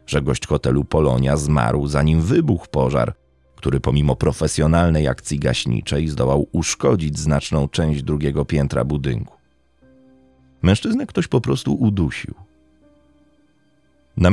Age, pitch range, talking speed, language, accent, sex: 30-49, 70-100 Hz, 110 wpm, Polish, native, male